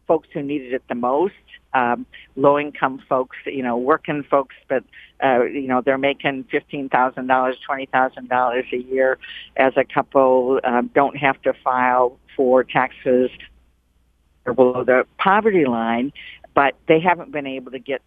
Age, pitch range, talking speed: 50-69, 120-145 Hz, 145 wpm